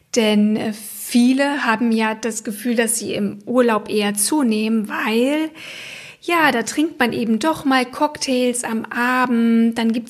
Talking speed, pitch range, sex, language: 150 wpm, 215-250 Hz, female, German